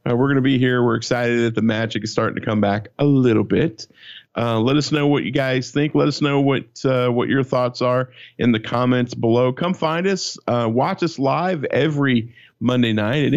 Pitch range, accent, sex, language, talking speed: 110-130 Hz, American, male, English, 230 wpm